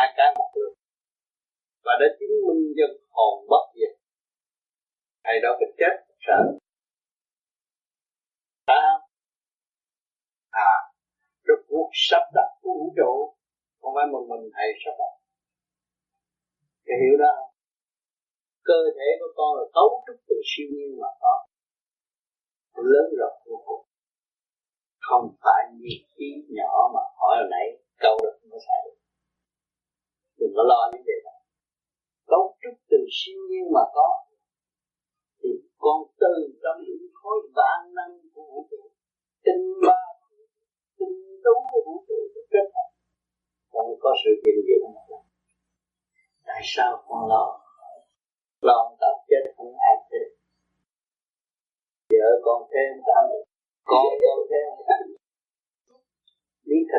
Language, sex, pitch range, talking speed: Vietnamese, male, 370-430 Hz, 120 wpm